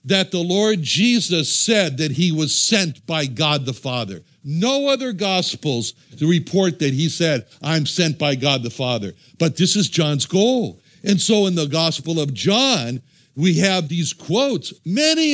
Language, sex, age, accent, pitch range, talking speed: English, male, 60-79, American, 155-195 Hz, 170 wpm